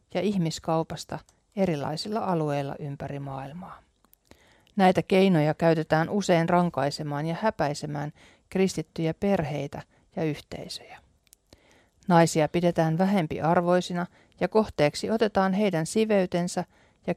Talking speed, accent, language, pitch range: 90 wpm, native, Finnish, 155-190 Hz